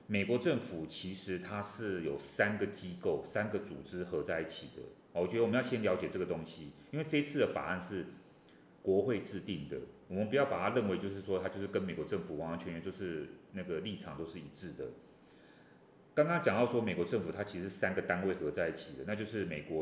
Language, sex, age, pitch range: Chinese, male, 30-49, 90-115 Hz